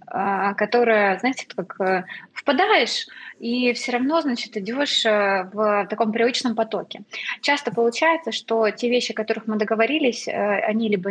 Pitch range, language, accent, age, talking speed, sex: 205-245 Hz, Russian, native, 20-39, 130 wpm, female